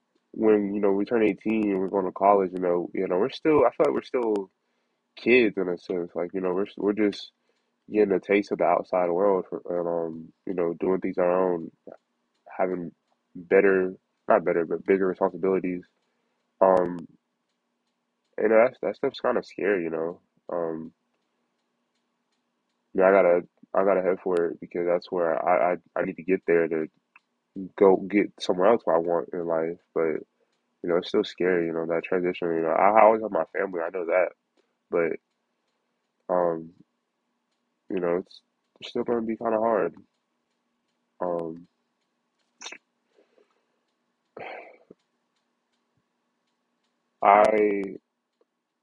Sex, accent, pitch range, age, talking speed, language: male, American, 85-100 Hz, 20-39, 160 wpm, English